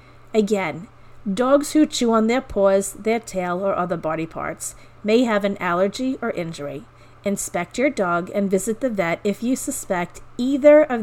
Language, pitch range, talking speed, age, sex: English, 190-225 Hz, 170 wpm, 40-59, female